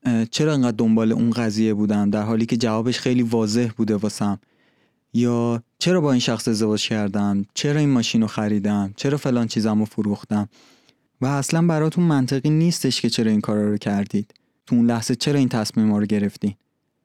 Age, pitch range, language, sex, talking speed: 20-39, 110-135 Hz, Persian, male, 175 wpm